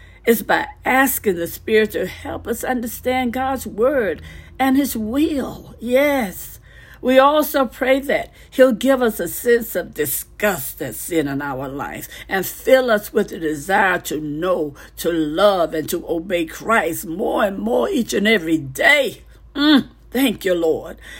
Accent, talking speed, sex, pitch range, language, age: American, 160 wpm, female, 180-265 Hz, English, 60-79